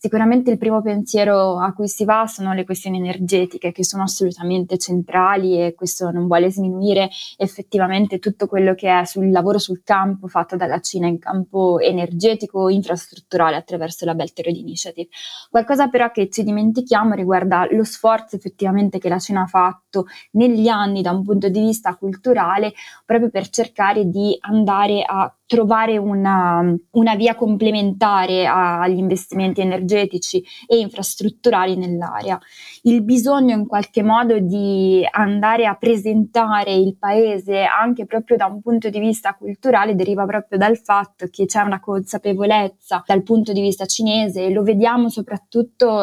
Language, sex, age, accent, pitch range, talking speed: Italian, female, 20-39, native, 185-215 Hz, 155 wpm